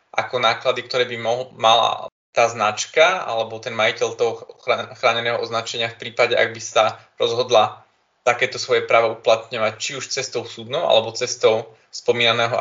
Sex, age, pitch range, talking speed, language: male, 20-39, 120-135 Hz, 150 wpm, Slovak